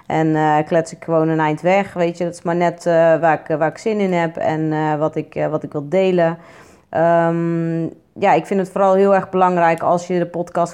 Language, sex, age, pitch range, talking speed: Dutch, female, 30-49, 160-195 Hz, 225 wpm